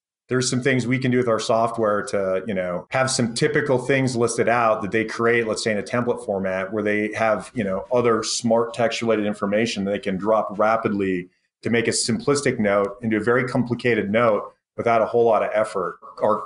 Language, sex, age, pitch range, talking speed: English, male, 30-49, 100-120 Hz, 215 wpm